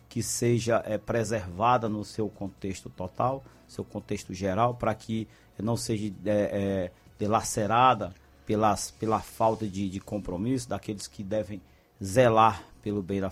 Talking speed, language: 120 wpm, Portuguese